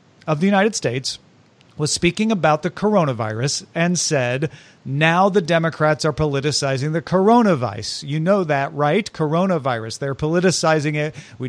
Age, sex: 40-59, male